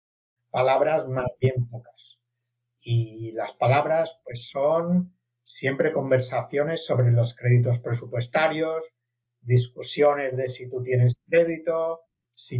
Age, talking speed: 50-69, 105 wpm